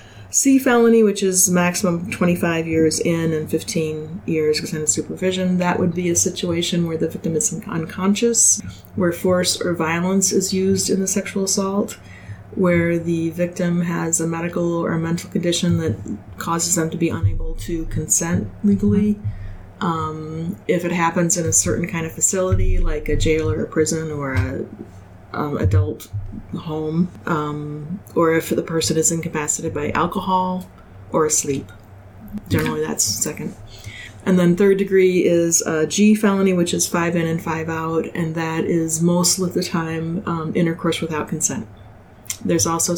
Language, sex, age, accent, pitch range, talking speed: English, female, 30-49, American, 110-175 Hz, 160 wpm